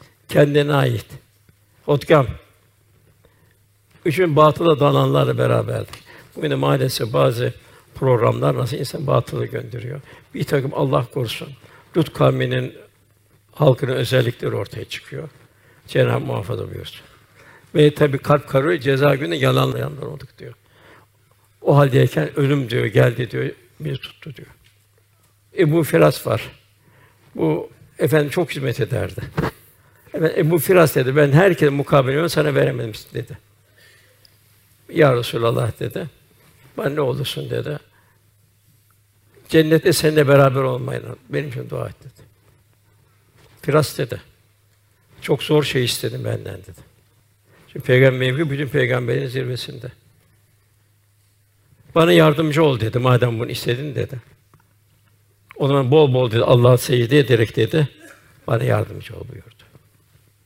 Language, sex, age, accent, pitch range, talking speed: Turkish, male, 60-79, native, 105-145 Hz, 115 wpm